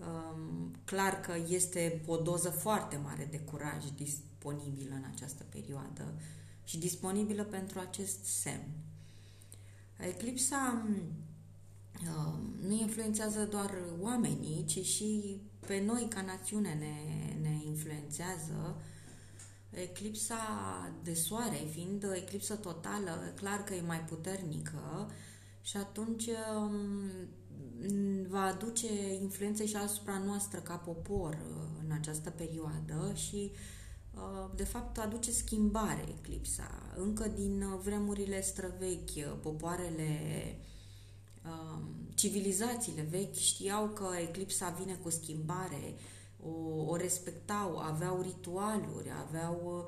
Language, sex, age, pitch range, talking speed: Romanian, female, 20-39, 145-200 Hz, 100 wpm